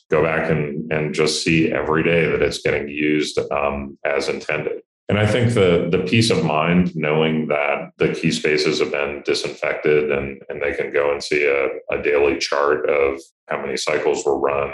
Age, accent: 40-59, American